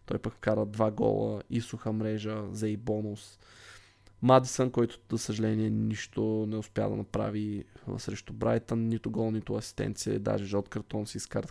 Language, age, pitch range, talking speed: Bulgarian, 20-39, 105-120 Hz, 165 wpm